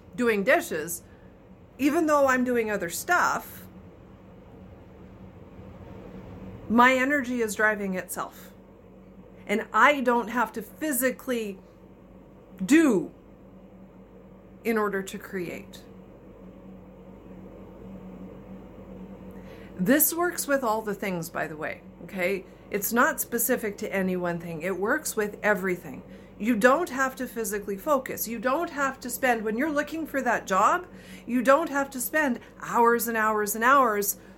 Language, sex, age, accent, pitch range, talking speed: English, female, 50-69, American, 200-270 Hz, 125 wpm